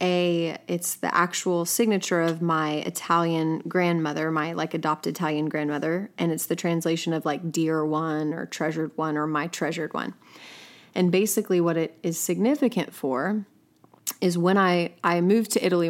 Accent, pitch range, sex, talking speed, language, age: American, 160-180 Hz, female, 160 wpm, English, 30-49